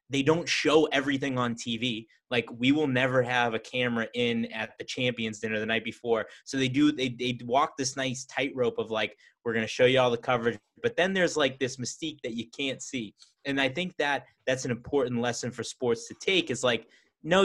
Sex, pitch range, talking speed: male, 115-145 Hz, 225 wpm